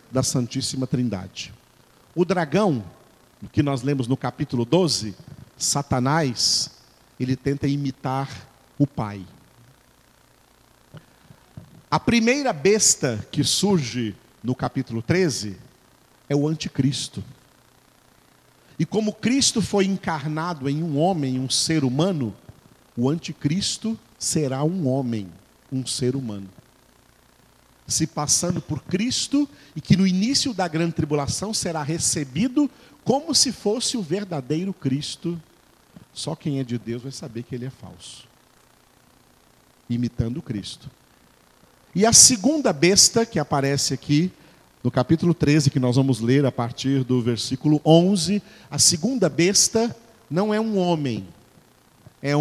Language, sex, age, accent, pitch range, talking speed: Portuguese, male, 50-69, Brazilian, 130-185 Hz, 120 wpm